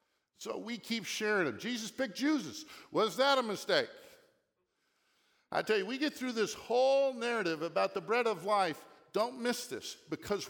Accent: American